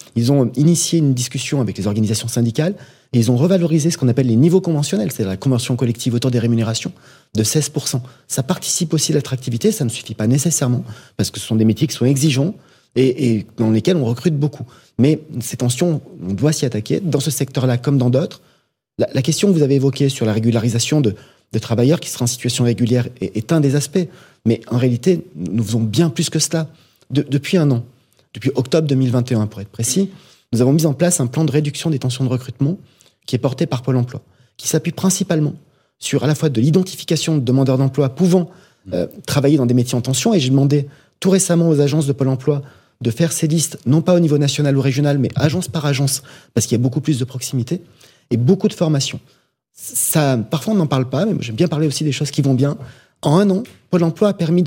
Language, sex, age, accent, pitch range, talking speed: French, male, 30-49, French, 125-160 Hz, 225 wpm